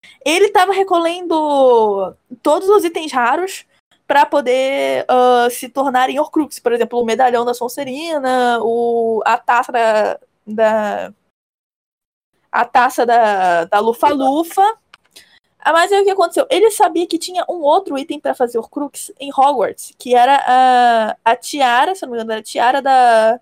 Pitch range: 240-345 Hz